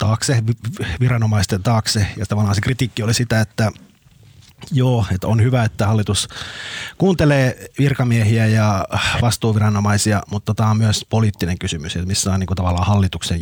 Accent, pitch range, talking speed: native, 100-120 Hz, 135 wpm